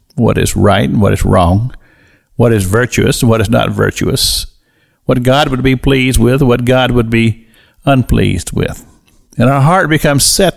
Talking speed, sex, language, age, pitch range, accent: 180 wpm, male, English, 50-69, 105-140 Hz, American